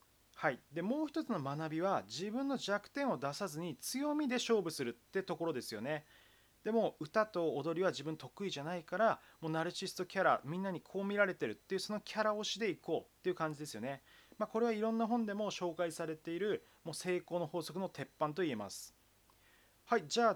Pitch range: 160-220 Hz